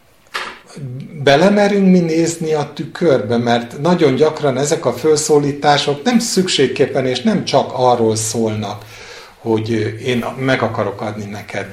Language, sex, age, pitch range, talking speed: Hungarian, male, 50-69, 110-135 Hz, 125 wpm